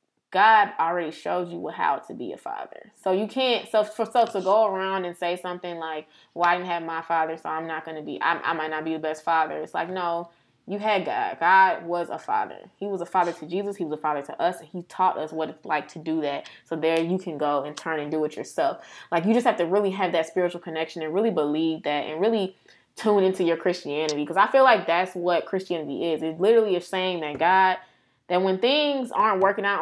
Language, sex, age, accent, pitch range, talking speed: English, female, 20-39, American, 160-195 Hz, 250 wpm